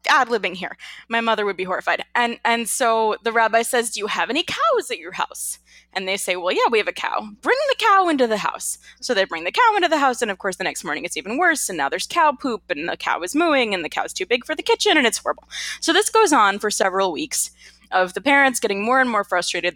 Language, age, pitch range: English, 20-39, 185-275 Hz